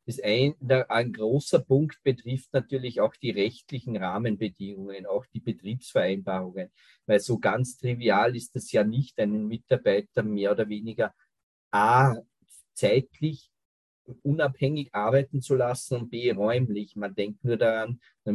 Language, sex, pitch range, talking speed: German, male, 110-135 Hz, 135 wpm